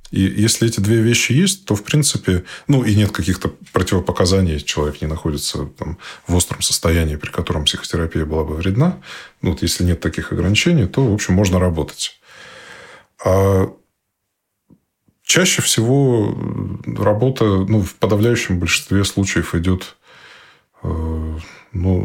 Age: 20-39